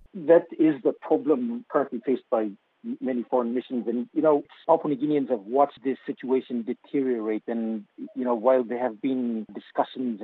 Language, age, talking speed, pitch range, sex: English, 50-69, 170 wpm, 115-140 Hz, male